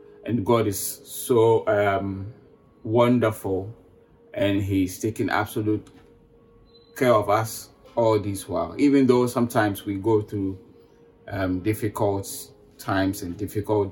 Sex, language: male, English